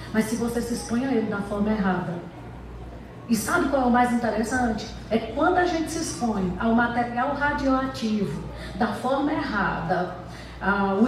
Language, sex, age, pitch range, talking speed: Portuguese, female, 40-59, 215-265 Hz, 170 wpm